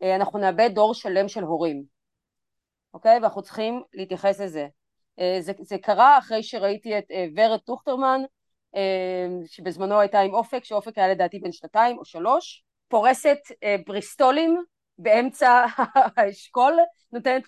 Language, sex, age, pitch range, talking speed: Hebrew, female, 30-49, 195-245 Hz, 120 wpm